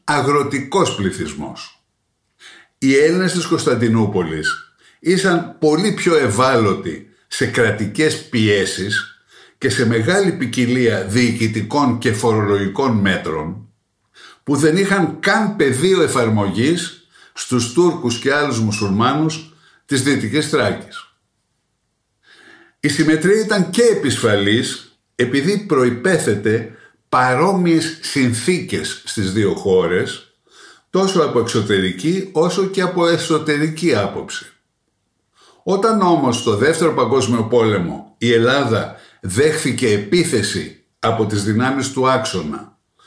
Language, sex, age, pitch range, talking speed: Greek, male, 60-79, 115-165 Hz, 100 wpm